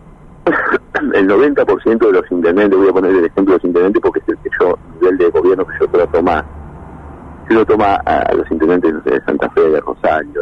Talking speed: 205 wpm